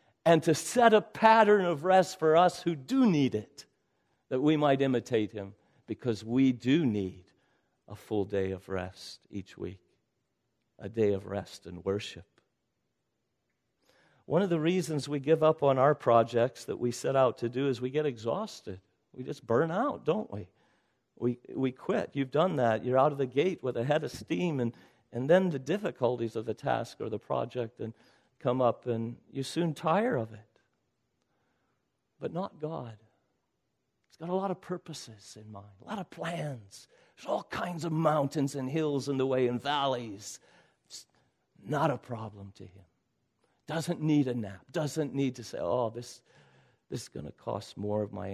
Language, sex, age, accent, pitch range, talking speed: English, male, 50-69, American, 110-150 Hz, 180 wpm